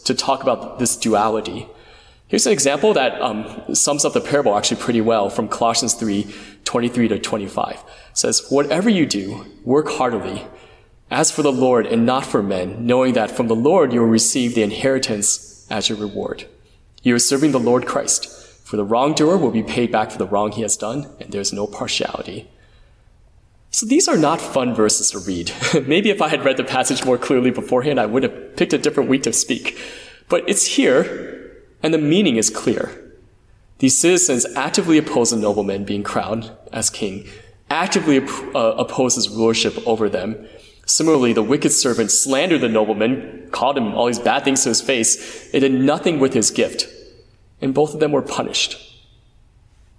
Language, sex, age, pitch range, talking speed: English, male, 20-39, 105-135 Hz, 185 wpm